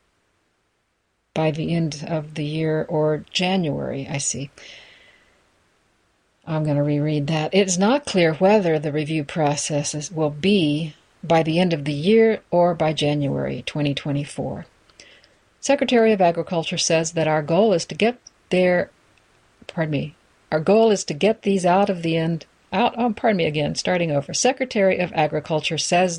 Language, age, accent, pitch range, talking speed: English, 60-79, American, 155-205 Hz, 155 wpm